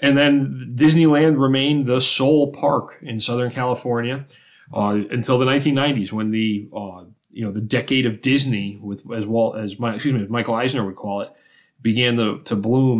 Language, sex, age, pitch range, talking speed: English, male, 30-49, 110-135 Hz, 185 wpm